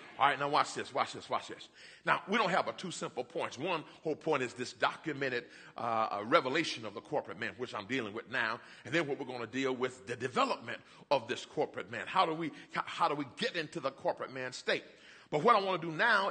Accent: American